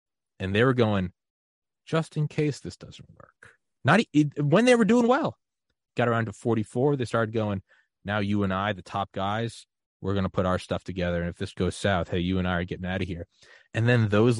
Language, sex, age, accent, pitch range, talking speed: English, male, 20-39, American, 90-115 Hz, 225 wpm